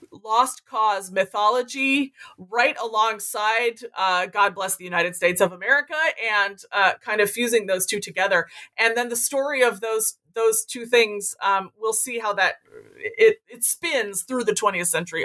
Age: 30-49